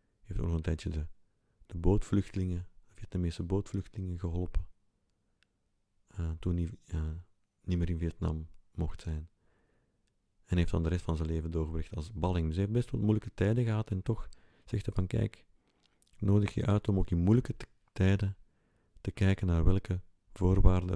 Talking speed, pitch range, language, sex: 175 wpm, 85-100 Hz, Dutch, male